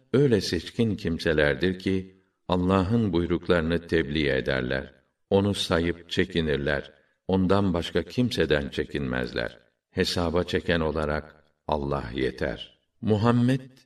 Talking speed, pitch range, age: 90 wpm, 75-95 Hz, 60-79